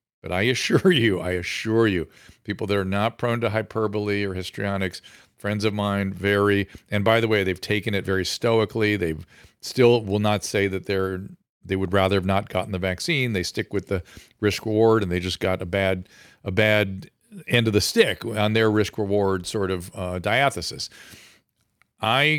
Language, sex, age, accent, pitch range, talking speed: English, male, 40-59, American, 95-115 Hz, 190 wpm